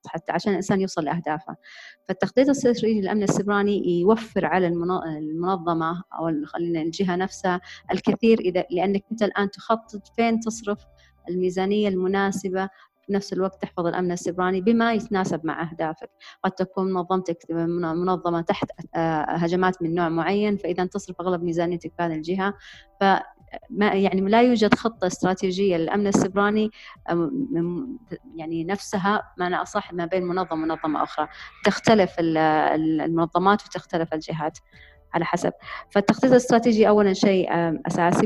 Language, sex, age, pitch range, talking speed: Arabic, female, 30-49, 170-200 Hz, 125 wpm